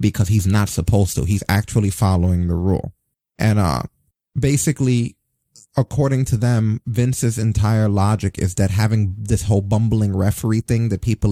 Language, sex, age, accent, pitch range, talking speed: English, male, 30-49, American, 100-120 Hz, 155 wpm